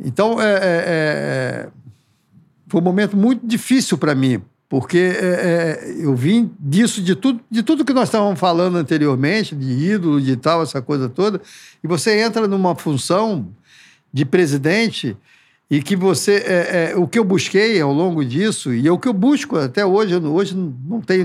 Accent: Brazilian